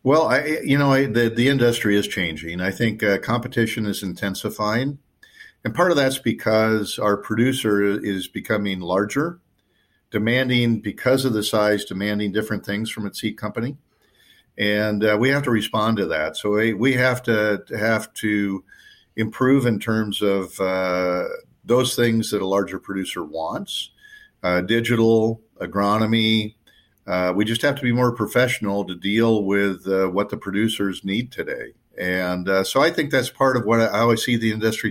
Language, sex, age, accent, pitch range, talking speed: English, male, 50-69, American, 100-125 Hz, 170 wpm